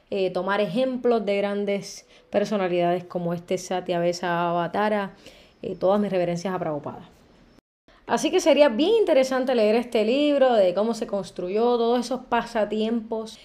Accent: American